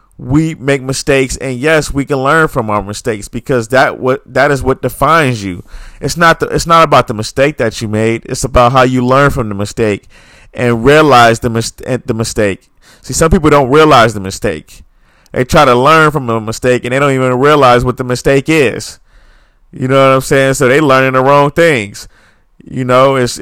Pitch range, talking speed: 125-150 Hz, 210 wpm